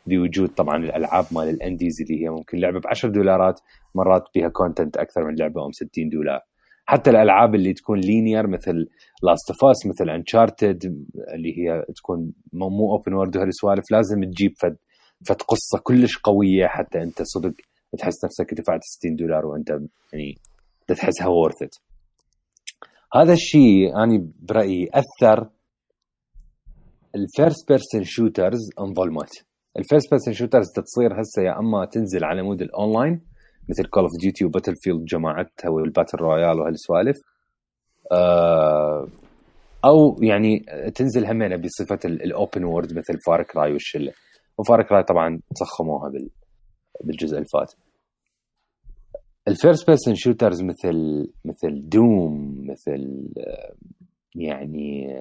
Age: 30-49